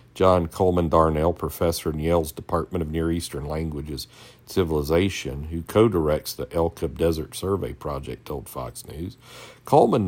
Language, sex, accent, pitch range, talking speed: English, male, American, 80-105 Hz, 145 wpm